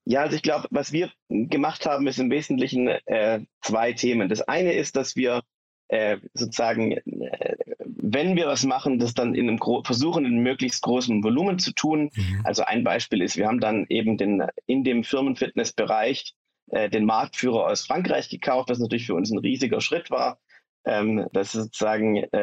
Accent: German